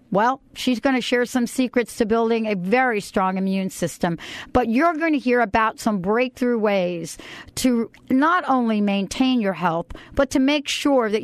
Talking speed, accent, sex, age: 180 wpm, American, female, 50-69